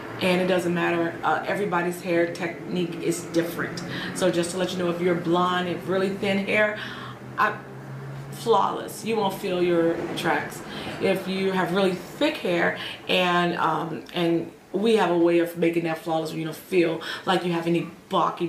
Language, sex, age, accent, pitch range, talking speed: English, female, 40-59, American, 165-190 Hz, 180 wpm